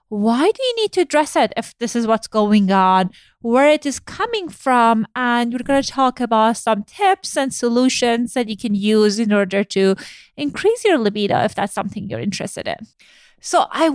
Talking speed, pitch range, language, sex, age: 200 wpm, 220-300 Hz, English, female, 20-39